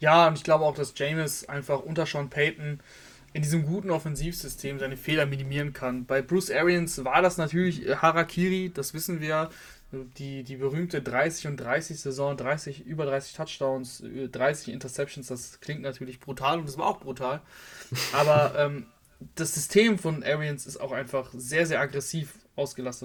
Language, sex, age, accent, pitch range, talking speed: German, male, 20-39, German, 135-175 Hz, 160 wpm